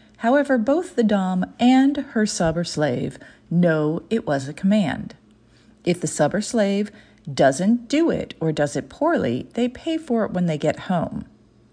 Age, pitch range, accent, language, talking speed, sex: 40-59, 145-220 Hz, American, English, 175 wpm, female